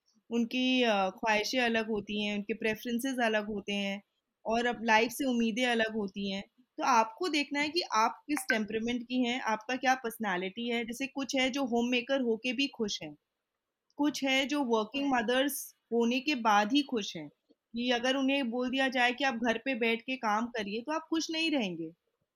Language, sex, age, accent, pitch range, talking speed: Hindi, female, 20-39, native, 220-275 Hz, 190 wpm